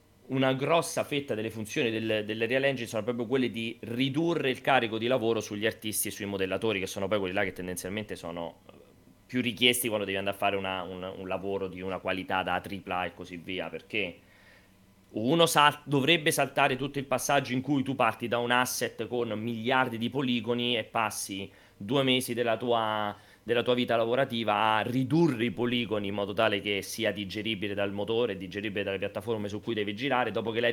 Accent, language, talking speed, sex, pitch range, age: native, Italian, 190 wpm, male, 100-125 Hz, 30-49